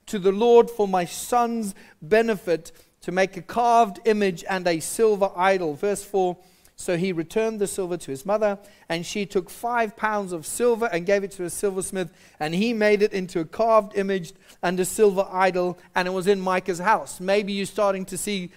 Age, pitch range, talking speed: 40-59, 165-210 Hz, 200 wpm